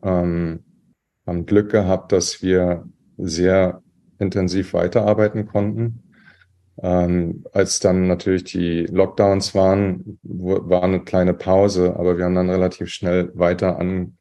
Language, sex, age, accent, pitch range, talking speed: German, male, 30-49, German, 85-95 Hz, 120 wpm